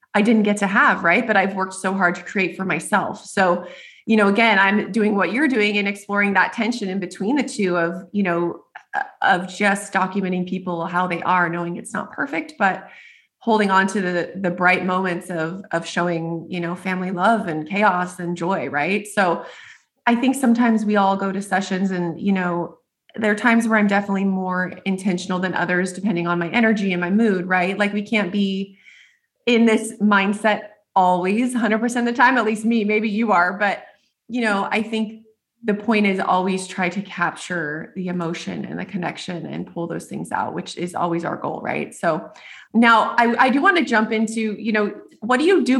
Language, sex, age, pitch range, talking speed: English, female, 20-39, 180-220 Hz, 205 wpm